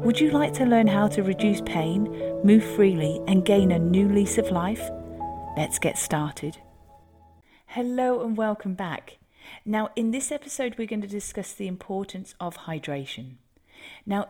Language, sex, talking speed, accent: English, female, 160 wpm, British